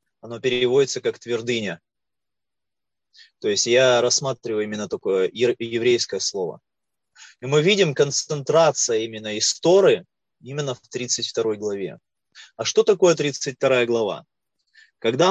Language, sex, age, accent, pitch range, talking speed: Russian, male, 20-39, native, 115-155 Hz, 110 wpm